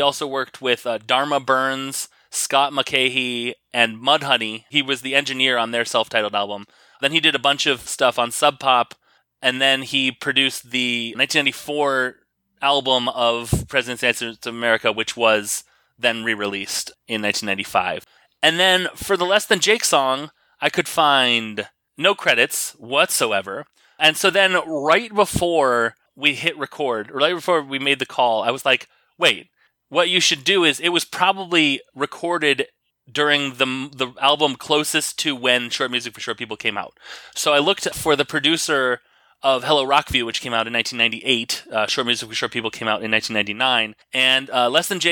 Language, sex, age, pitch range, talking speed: English, male, 30-49, 120-155 Hz, 170 wpm